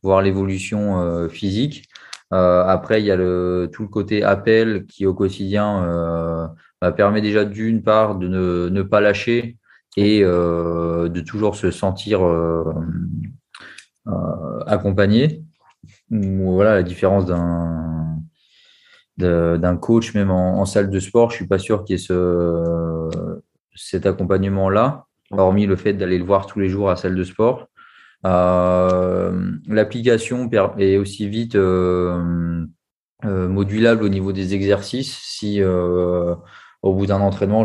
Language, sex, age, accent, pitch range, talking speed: French, male, 20-39, French, 90-105 Hz, 140 wpm